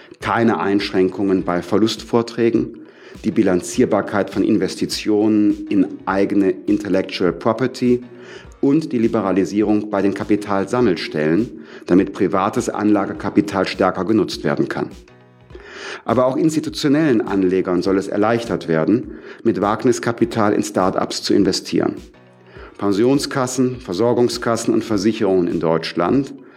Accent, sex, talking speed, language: German, male, 100 wpm, German